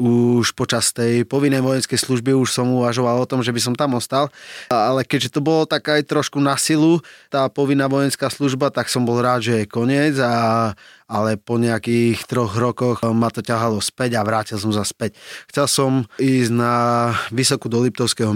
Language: Slovak